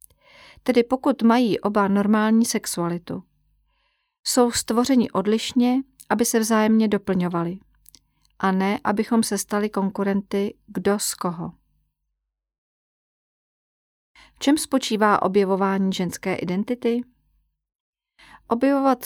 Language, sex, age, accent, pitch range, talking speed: Czech, female, 40-59, native, 190-235 Hz, 90 wpm